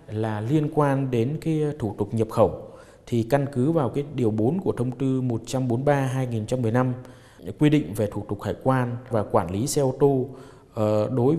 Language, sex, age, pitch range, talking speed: Vietnamese, male, 20-39, 105-130 Hz, 180 wpm